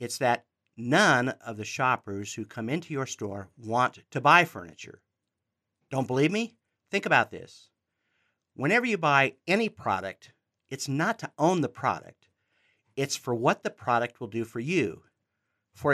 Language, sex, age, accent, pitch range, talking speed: English, male, 50-69, American, 110-150 Hz, 160 wpm